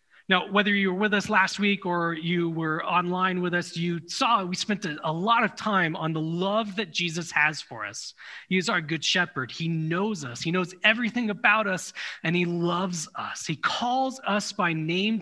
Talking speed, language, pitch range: 205 wpm, English, 155-200 Hz